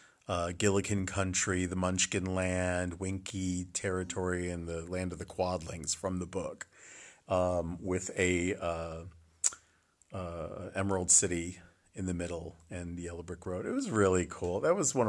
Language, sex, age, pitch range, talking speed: English, male, 40-59, 85-100 Hz, 155 wpm